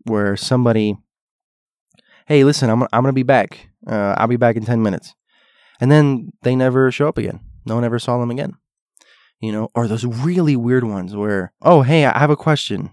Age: 20-39